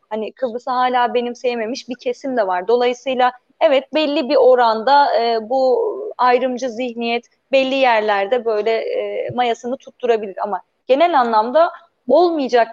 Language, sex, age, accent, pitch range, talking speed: German, female, 30-49, Turkish, 225-280 Hz, 130 wpm